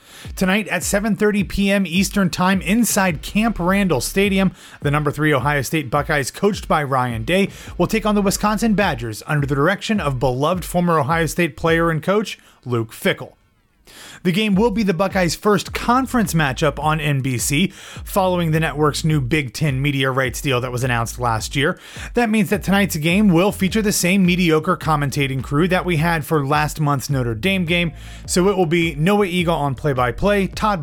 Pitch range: 135-180 Hz